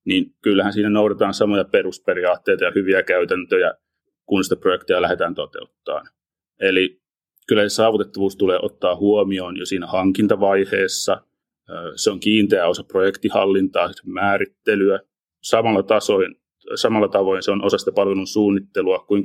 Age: 30-49